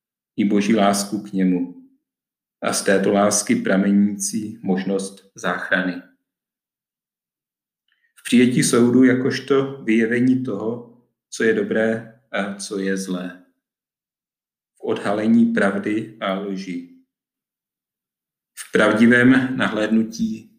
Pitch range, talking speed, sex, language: 100-125 Hz, 95 wpm, male, Czech